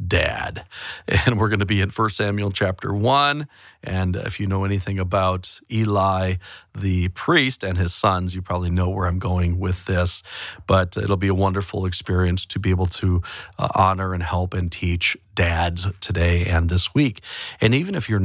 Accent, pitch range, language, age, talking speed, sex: American, 90-110 Hz, English, 40-59, 180 wpm, male